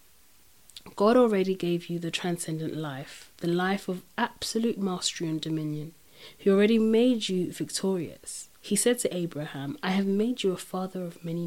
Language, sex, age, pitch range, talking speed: English, female, 30-49, 165-205 Hz, 160 wpm